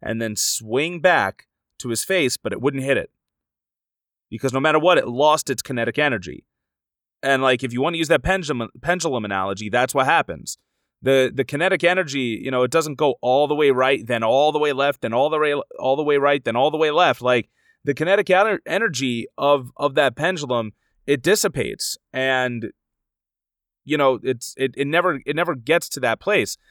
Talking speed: 200 wpm